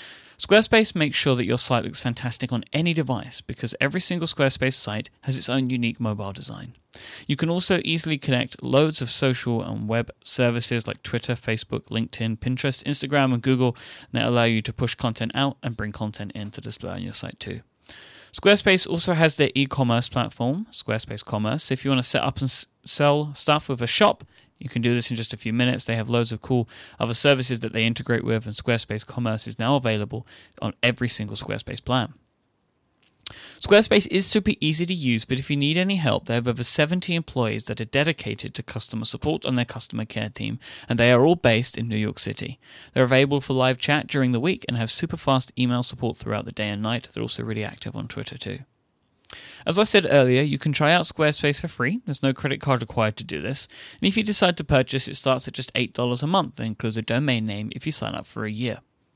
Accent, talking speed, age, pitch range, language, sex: British, 220 wpm, 30-49, 115-145 Hz, English, male